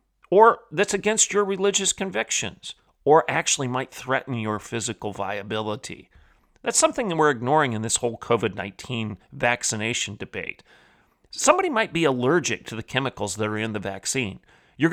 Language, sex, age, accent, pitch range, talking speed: English, male, 40-59, American, 110-150 Hz, 150 wpm